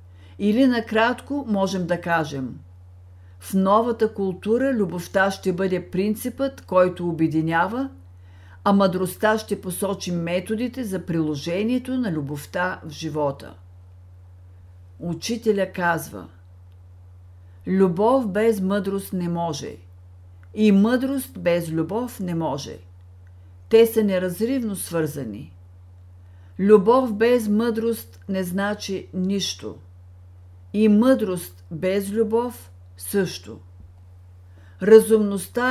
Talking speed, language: 90 wpm, Bulgarian